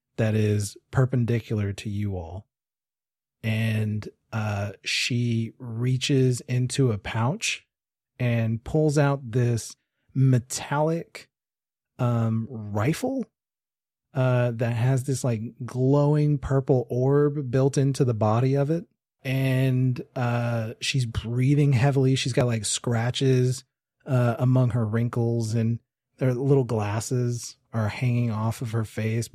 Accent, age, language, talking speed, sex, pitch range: American, 30-49, English, 115 wpm, male, 110-135 Hz